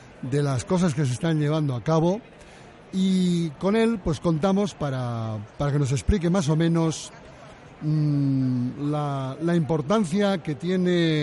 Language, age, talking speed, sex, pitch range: Spanish, 60-79, 145 wpm, male, 135-165 Hz